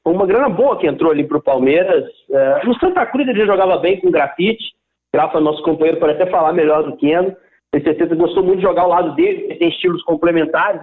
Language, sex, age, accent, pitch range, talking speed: Portuguese, male, 50-69, Brazilian, 160-270 Hz, 225 wpm